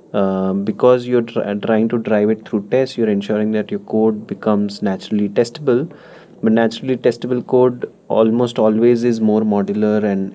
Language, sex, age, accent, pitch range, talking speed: English, male, 30-49, Indian, 100-125 Hz, 160 wpm